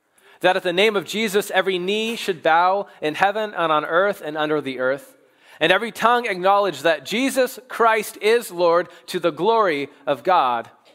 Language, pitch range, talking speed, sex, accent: English, 170-220 Hz, 180 wpm, male, American